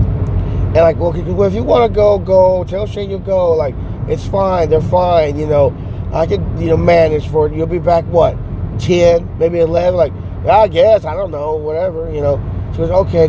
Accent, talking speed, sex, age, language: American, 210 wpm, male, 20-39, English